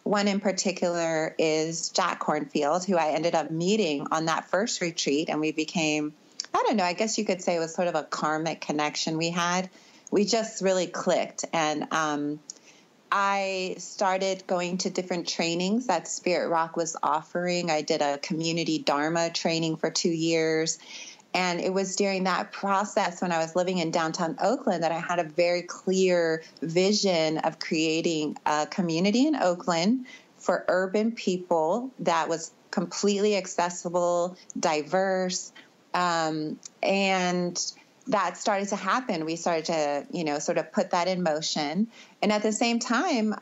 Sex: female